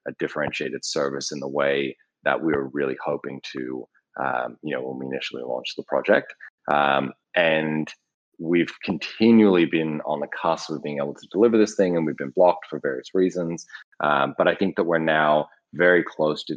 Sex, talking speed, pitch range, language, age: male, 190 wpm, 70-85 Hz, English, 30-49